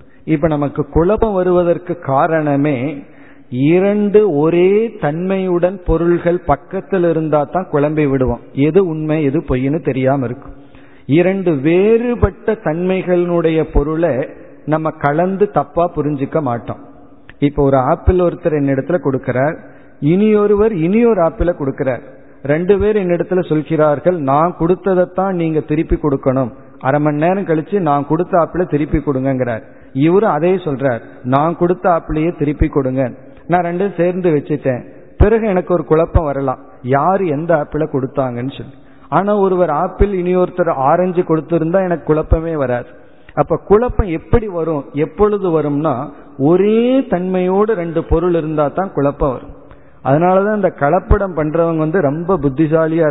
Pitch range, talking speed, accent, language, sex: 145-180 Hz, 125 wpm, native, Tamil, male